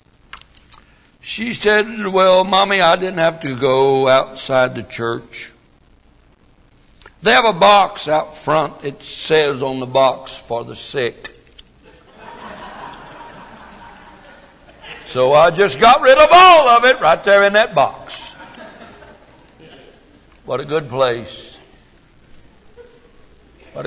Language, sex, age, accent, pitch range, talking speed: English, male, 60-79, American, 110-165 Hz, 115 wpm